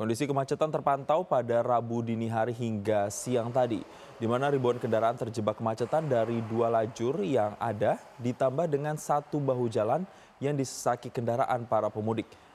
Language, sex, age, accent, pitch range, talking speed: Indonesian, male, 20-39, native, 110-135 Hz, 150 wpm